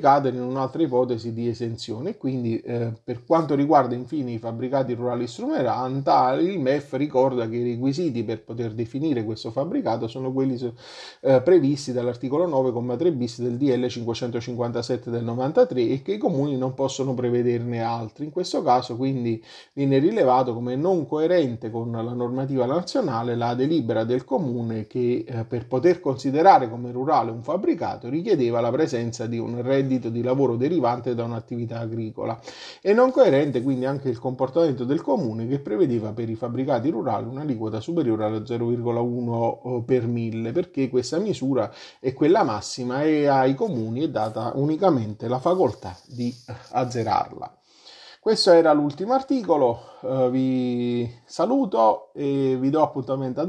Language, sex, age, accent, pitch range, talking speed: Italian, male, 30-49, native, 120-135 Hz, 150 wpm